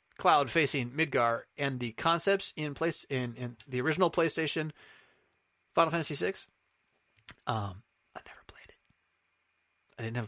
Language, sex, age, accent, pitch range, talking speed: English, male, 30-49, American, 110-145 Hz, 140 wpm